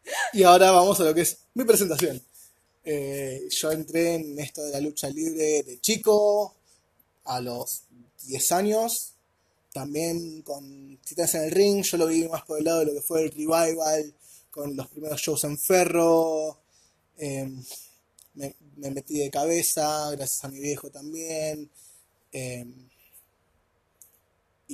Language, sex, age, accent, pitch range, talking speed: Spanish, male, 20-39, Argentinian, 125-160 Hz, 150 wpm